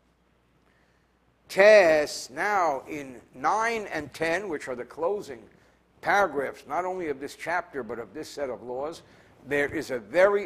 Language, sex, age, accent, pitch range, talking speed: English, male, 60-79, American, 160-240 Hz, 150 wpm